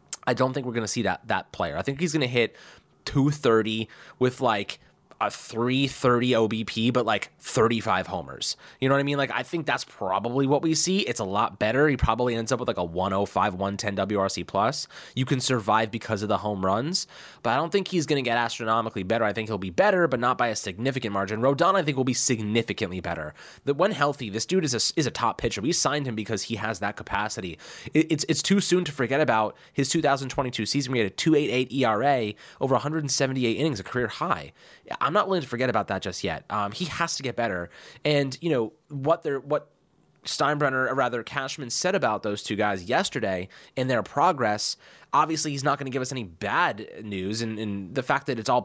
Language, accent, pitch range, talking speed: English, American, 105-140 Hz, 225 wpm